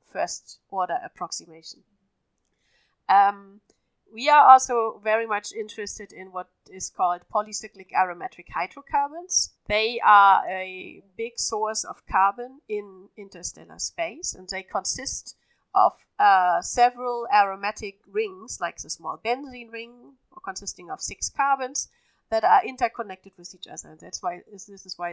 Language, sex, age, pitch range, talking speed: English, female, 30-49, 190-240 Hz, 135 wpm